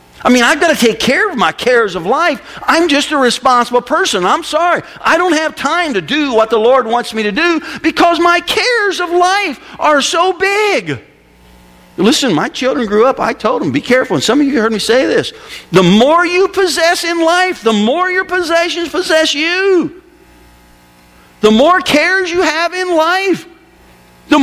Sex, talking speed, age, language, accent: male, 190 wpm, 50-69, English, American